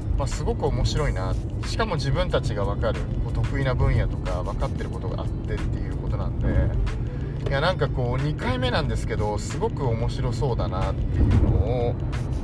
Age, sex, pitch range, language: 30-49, male, 105-120 Hz, Japanese